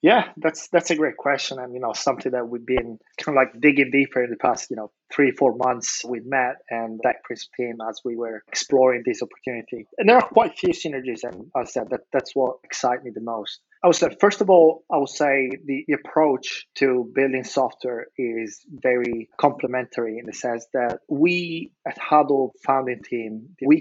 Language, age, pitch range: English, 20-39, 120-140 Hz